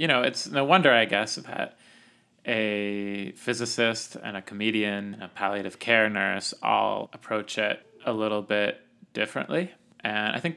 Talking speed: 160 wpm